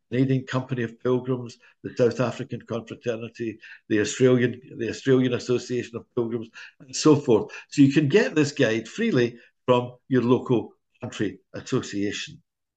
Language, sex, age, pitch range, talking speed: English, male, 60-79, 120-150 Hz, 140 wpm